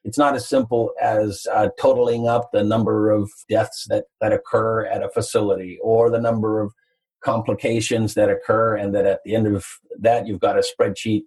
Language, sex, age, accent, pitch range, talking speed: English, male, 50-69, American, 105-140 Hz, 190 wpm